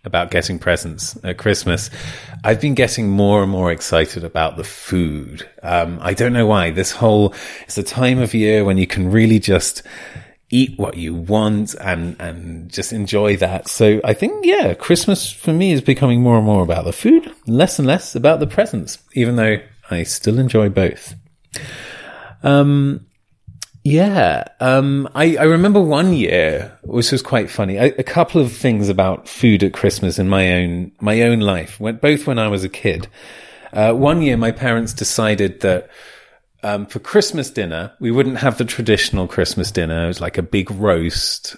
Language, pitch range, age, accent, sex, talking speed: English, 95-130 Hz, 30-49, British, male, 180 wpm